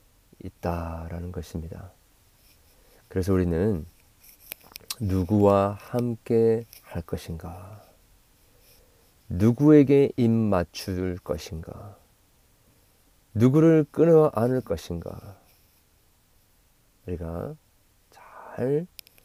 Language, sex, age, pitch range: Korean, male, 40-59, 85-110 Hz